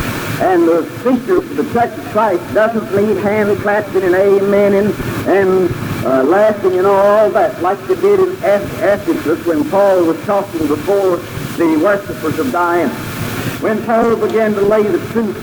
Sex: male